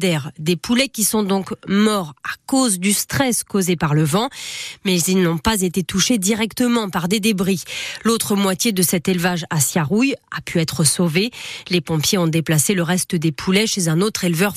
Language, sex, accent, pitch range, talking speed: French, female, French, 145-200 Hz, 195 wpm